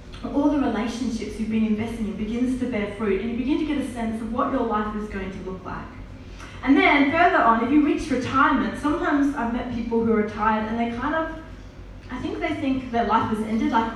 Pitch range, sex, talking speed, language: 215-265 Hz, female, 235 wpm, English